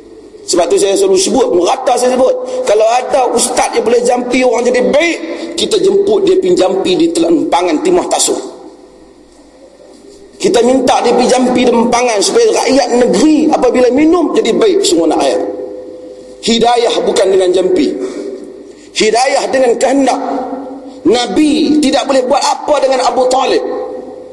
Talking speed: 145 wpm